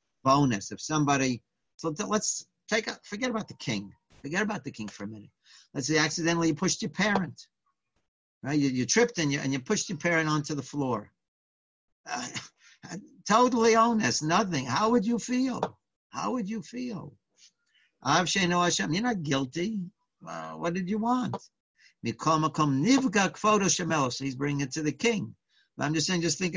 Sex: male